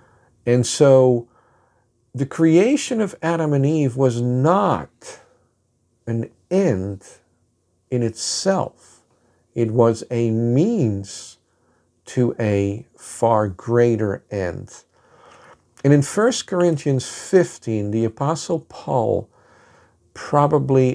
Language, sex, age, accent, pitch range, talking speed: English, male, 50-69, American, 115-150 Hz, 90 wpm